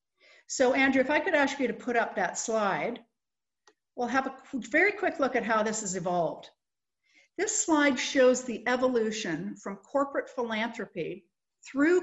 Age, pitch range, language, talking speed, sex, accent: 50-69, 200-260 Hz, English, 160 wpm, female, American